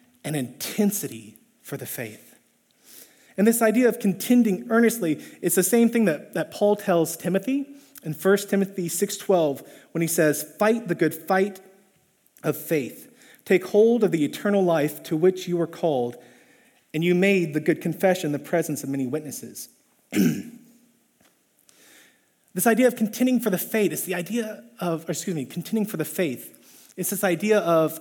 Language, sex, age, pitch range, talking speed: English, male, 30-49, 170-230 Hz, 165 wpm